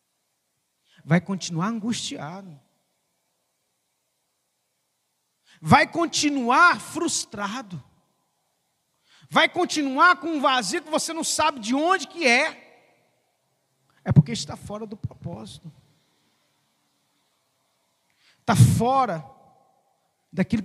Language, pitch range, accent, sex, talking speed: Portuguese, 185-255 Hz, Brazilian, male, 80 wpm